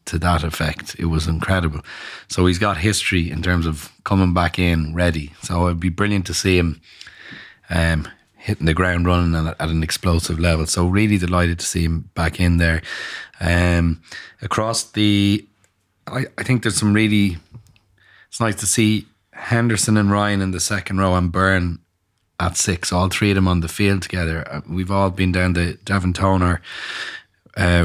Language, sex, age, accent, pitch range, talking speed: English, male, 30-49, Irish, 85-95 Hz, 175 wpm